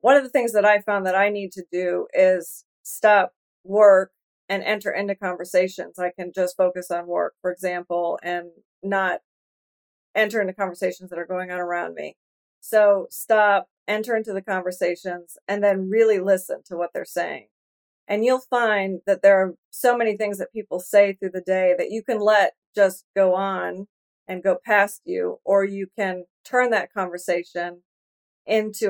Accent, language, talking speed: American, English, 175 wpm